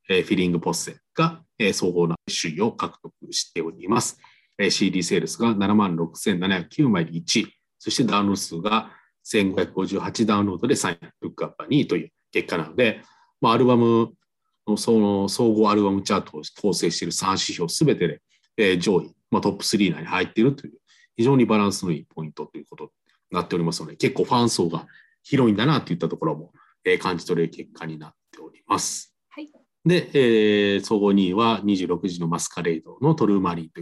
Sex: male